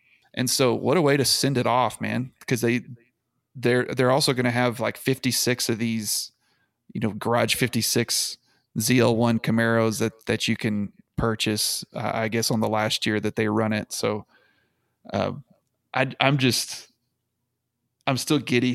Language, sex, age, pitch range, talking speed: English, male, 20-39, 120-155 Hz, 165 wpm